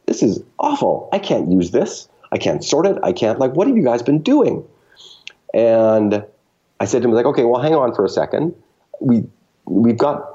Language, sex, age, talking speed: English, male, 40-59, 210 wpm